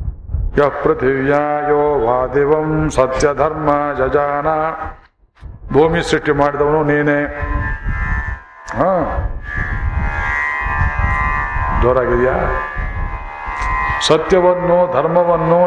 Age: 60-79